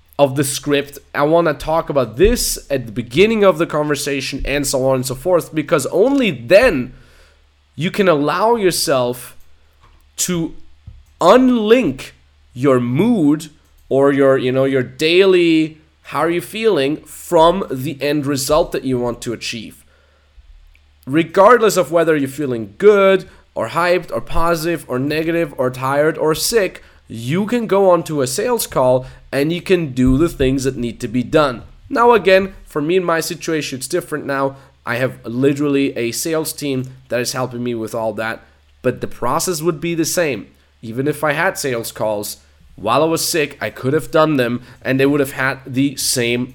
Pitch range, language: 125-170 Hz, English